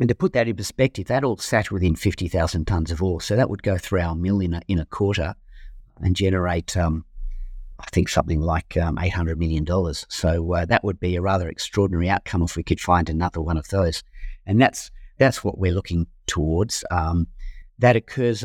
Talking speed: 205 wpm